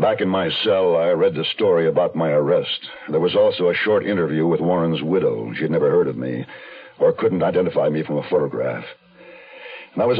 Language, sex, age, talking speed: English, male, 60-79, 200 wpm